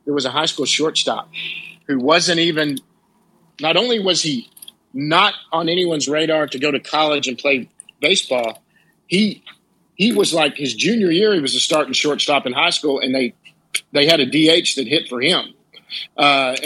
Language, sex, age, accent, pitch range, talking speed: English, male, 50-69, American, 135-165 Hz, 185 wpm